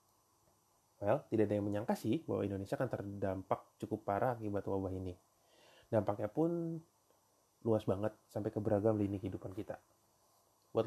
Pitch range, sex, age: 105-130 Hz, male, 20-39